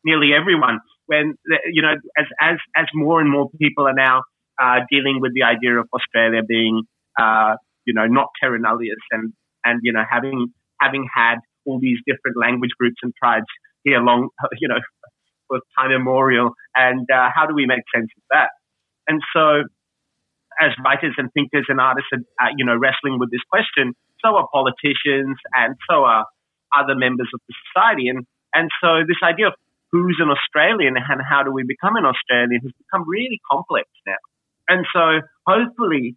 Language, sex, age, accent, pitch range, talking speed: English, male, 30-49, Australian, 125-160 Hz, 180 wpm